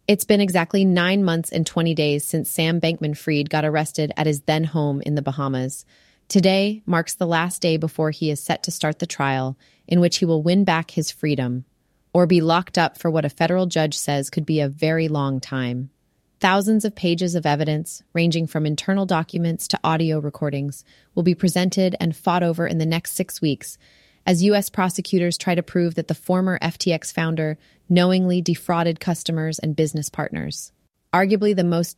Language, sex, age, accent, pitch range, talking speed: English, female, 30-49, American, 155-180 Hz, 190 wpm